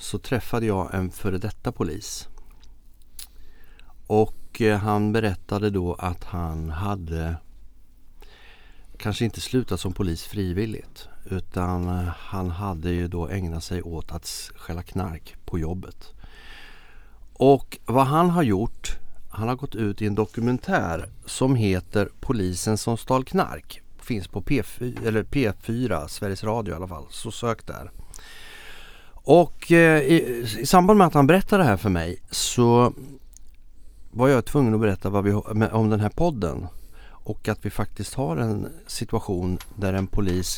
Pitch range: 90-115 Hz